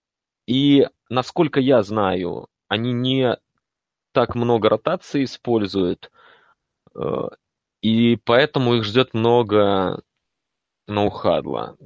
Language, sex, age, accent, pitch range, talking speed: Russian, male, 20-39, native, 95-120 Hz, 80 wpm